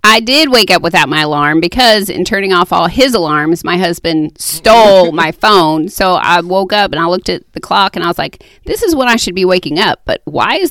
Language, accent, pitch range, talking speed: English, American, 175-220 Hz, 245 wpm